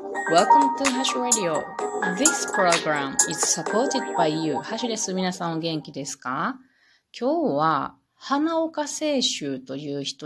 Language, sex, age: Japanese, female, 30-49